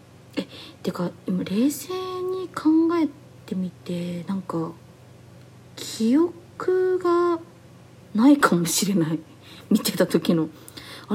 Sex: female